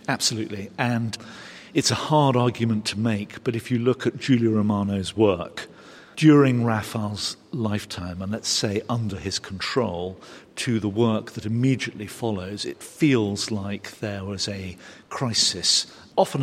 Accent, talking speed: British, 140 wpm